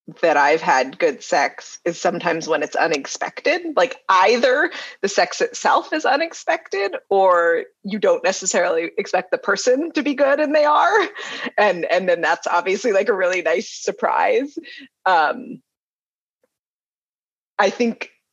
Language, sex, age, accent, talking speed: English, female, 30-49, American, 140 wpm